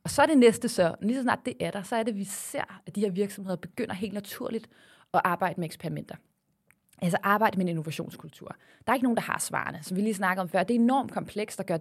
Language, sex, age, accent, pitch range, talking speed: Danish, female, 20-39, native, 180-230 Hz, 270 wpm